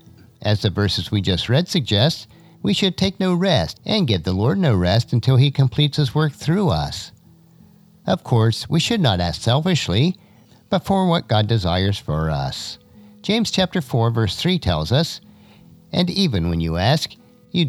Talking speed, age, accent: 175 wpm, 50-69, American